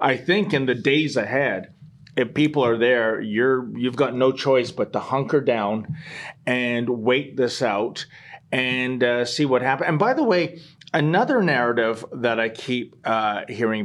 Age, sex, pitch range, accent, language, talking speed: 30-49, male, 130-175 Hz, American, English, 170 wpm